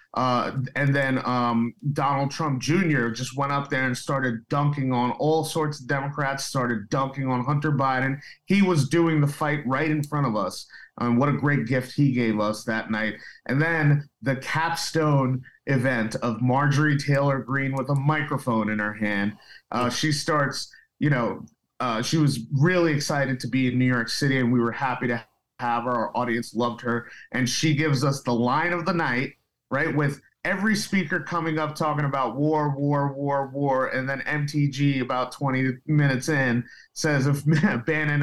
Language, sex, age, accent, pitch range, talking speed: English, male, 30-49, American, 125-150 Hz, 185 wpm